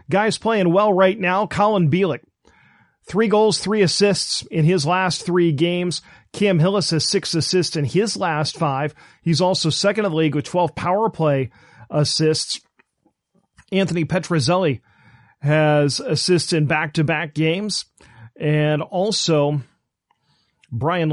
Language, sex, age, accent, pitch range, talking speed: English, male, 40-59, American, 150-190 Hz, 130 wpm